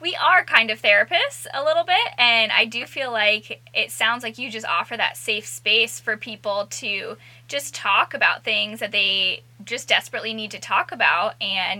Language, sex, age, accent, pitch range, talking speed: English, female, 10-29, American, 200-235 Hz, 195 wpm